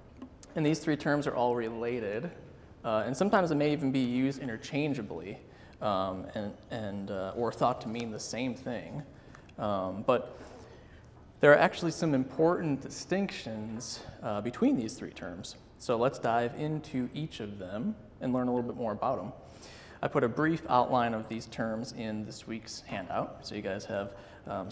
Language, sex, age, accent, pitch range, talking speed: English, male, 30-49, American, 110-135 Hz, 175 wpm